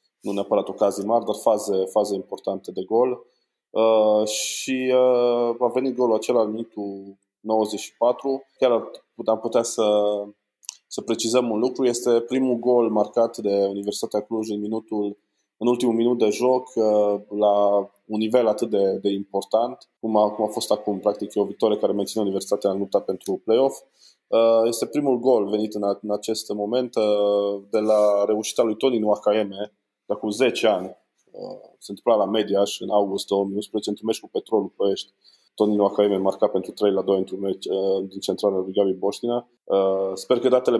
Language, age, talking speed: Romanian, 20-39, 170 wpm